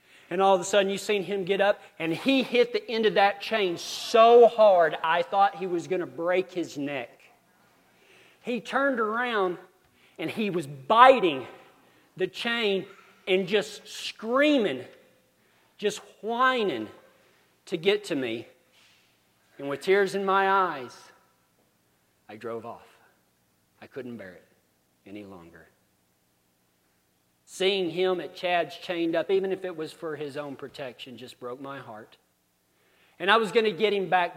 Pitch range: 120-200 Hz